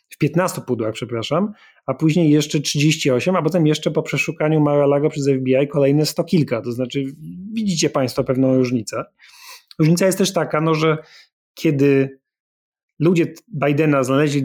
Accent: native